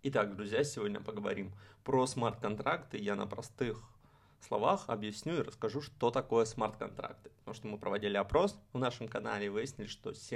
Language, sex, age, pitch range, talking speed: Russian, male, 20-39, 105-125 Hz, 150 wpm